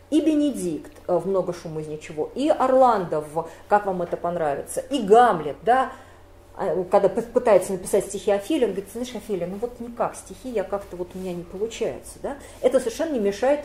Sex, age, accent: female, 40-59, native